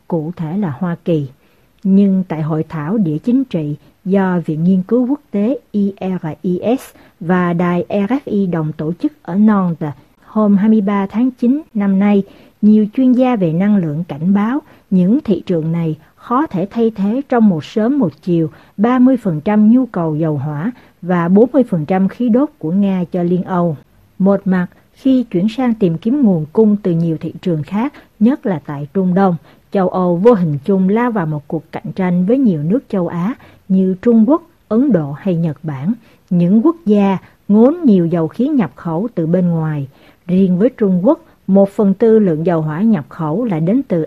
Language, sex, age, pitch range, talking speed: Vietnamese, female, 60-79, 170-230 Hz, 190 wpm